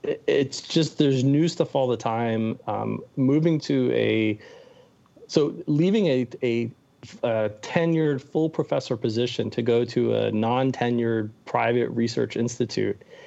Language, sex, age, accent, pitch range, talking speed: English, male, 30-49, American, 115-145 Hz, 135 wpm